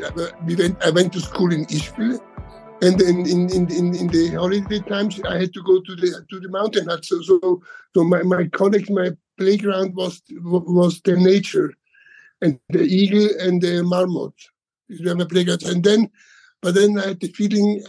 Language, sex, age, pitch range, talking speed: Hebrew, male, 60-79, 175-195 Hz, 190 wpm